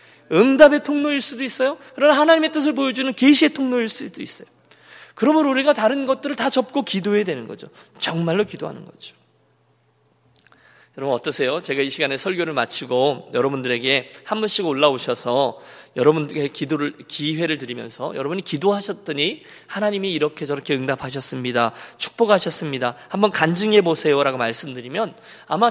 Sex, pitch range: male, 150-240 Hz